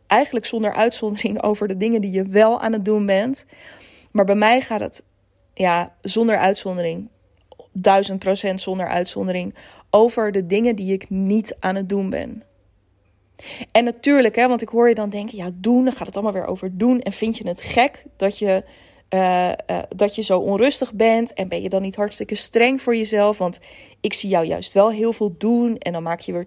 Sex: female